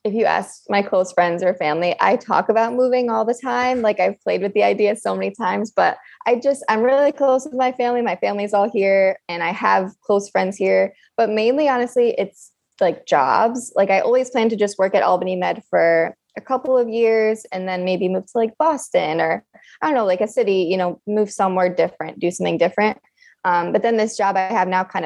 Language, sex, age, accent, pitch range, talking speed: English, female, 20-39, American, 185-245 Hz, 225 wpm